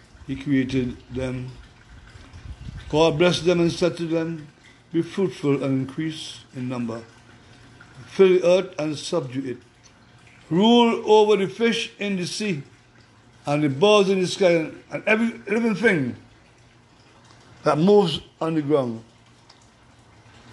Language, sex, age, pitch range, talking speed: English, male, 60-79, 120-170 Hz, 130 wpm